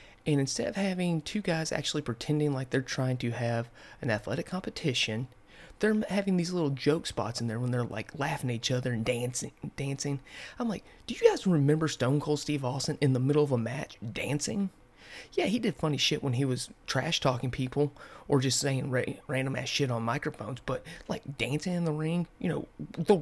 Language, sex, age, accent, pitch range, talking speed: English, male, 30-49, American, 125-155 Hz, 200 wpm